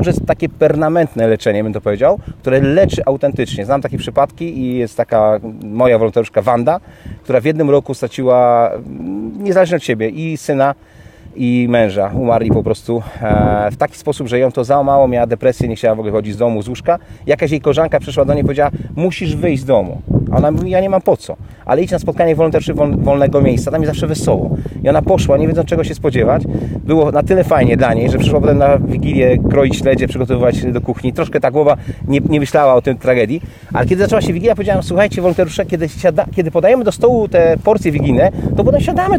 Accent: native